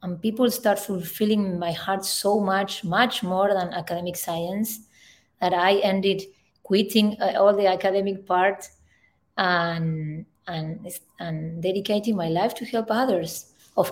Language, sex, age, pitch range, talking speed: English, female, 20-39, 175-205 Hz, 130 wpm